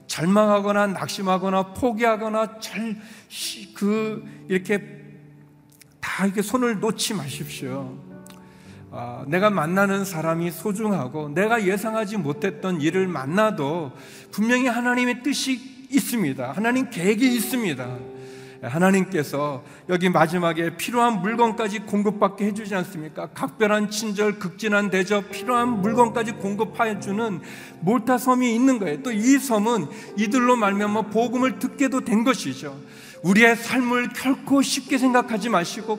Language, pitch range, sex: Korean, 180-235 Hz, male